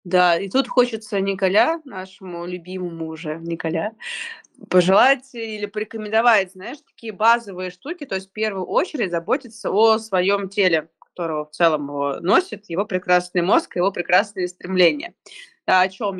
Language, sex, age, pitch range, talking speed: Russian, female, 20-39, 180-225 Hz, 140 wpm